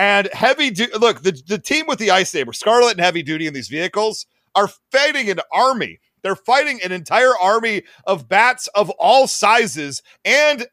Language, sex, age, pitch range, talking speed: English, male, 40-59, 180-230 Hz, 190 wpm